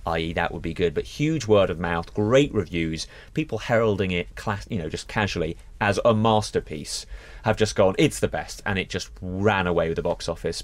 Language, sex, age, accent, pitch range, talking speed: English, male, 30-49, British, 90-130 Hz, 215 wpm